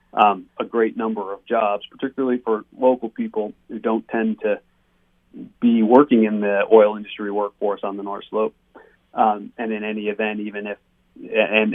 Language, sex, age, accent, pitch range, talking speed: English, male, 40-59, American, 105-135 Hz, 165 wpm